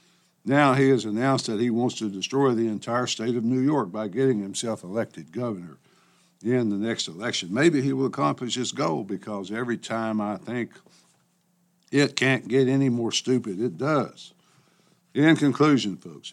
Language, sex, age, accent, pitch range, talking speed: English, male, 60-79, American, 110-145 Hz, 170 wpm